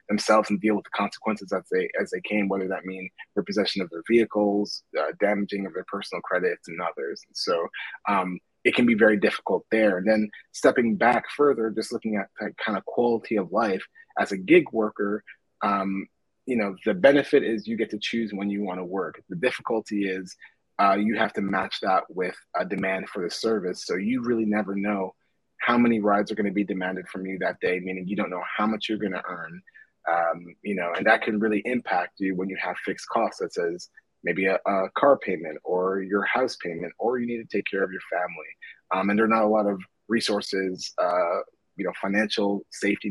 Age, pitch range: 30-49, 95-110 Hz